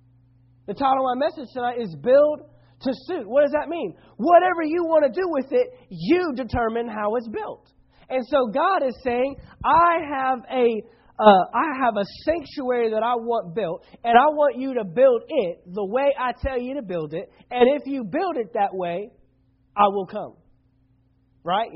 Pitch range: 180-275 Hz